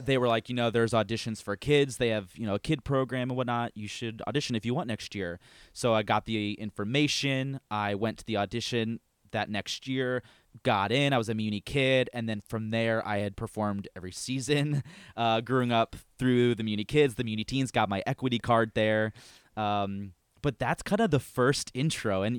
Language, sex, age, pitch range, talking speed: English, male, 20-39, 105-125 Hz, 210 wpm